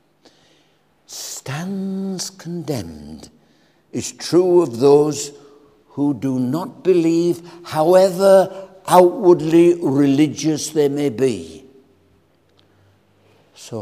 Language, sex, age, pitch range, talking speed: English, male, 60-79, 115-180 Hz, 75 wpm